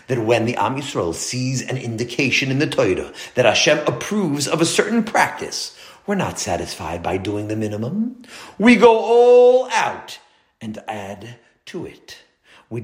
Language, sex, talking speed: English, male, 160 wpm